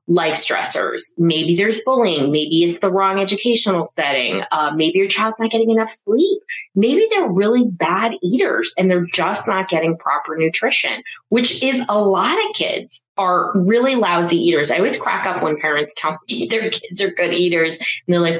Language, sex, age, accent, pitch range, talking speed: English, female, 30-49, American, 165-235 Hz, 185 wpm